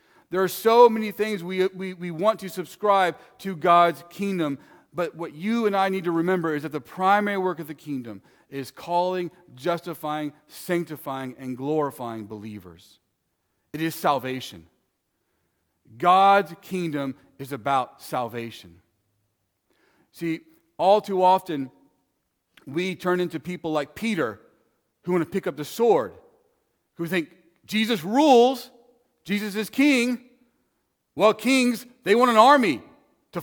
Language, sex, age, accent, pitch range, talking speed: English, male, 40-59, American, 145-200 Hz, 135 wpm